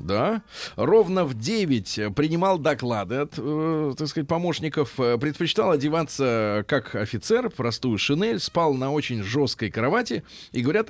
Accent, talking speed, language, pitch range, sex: native, 130 wpm, Russian, 115-160 Hz, male